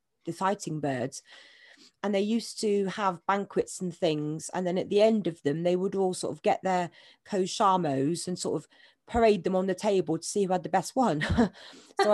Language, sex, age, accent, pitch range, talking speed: English, female, 40-59, British, 175-215 Hz, 210 wpm